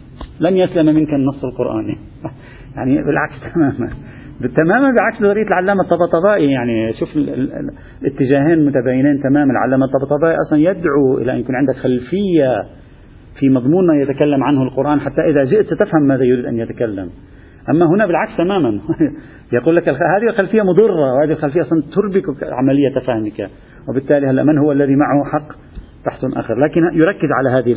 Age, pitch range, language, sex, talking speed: 40-59, 125-175 Hz, Arabic, male, 150 wpm